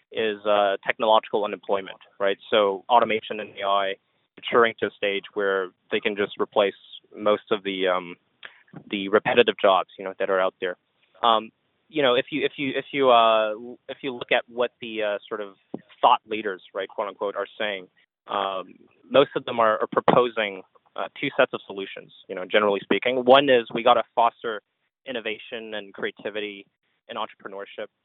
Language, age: English, 20-39